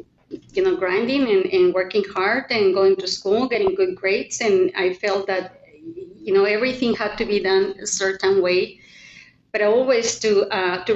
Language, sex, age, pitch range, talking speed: English, female, 30-49, 185-245 Hz, 180 wpm